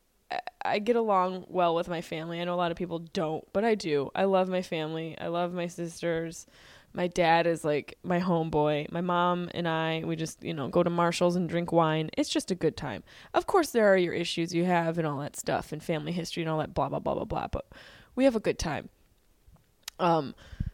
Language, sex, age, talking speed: English, female, 20-39, 230 wpm